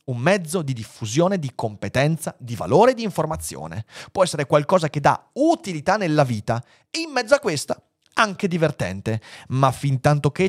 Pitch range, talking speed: 115-160 Hz, 165 wpm